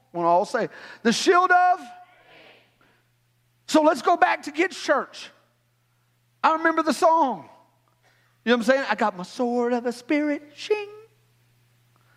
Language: English